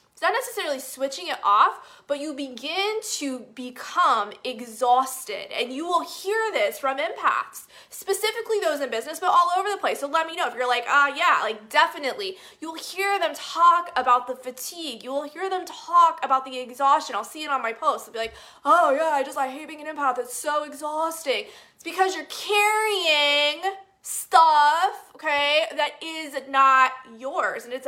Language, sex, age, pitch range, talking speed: English, female, 20-39, 255-370 Hz, 185 wpm